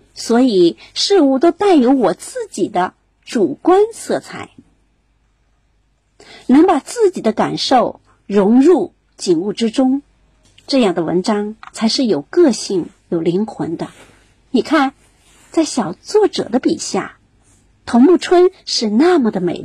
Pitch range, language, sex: 210-345 Hz, Chinese, female